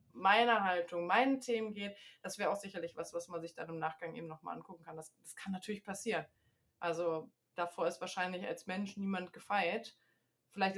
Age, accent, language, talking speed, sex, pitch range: 20-39, German, German, 190 wpm, female, 180-215 Hz